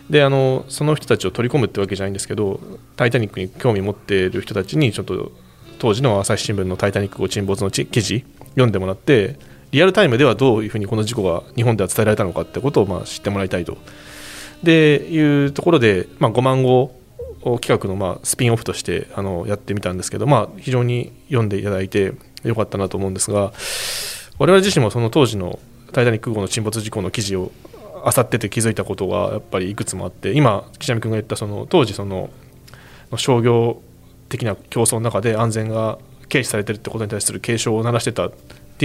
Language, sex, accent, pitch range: Japanese, male, native, 100-125 Hz